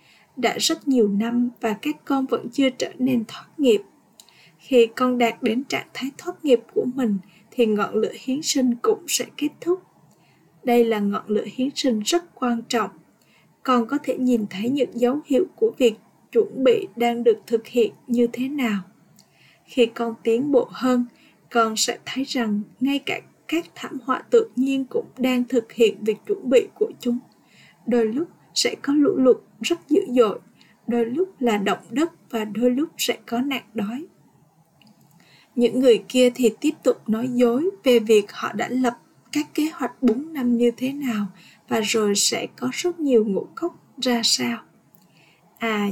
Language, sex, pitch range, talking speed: Vietnamese, female, 225-275 Hz, 180 wpm